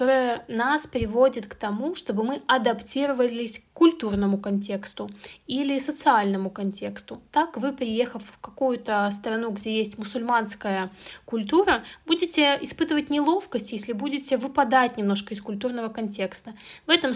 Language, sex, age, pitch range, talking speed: Russian, female, 30-49, 210-260 Hz, 120 wpm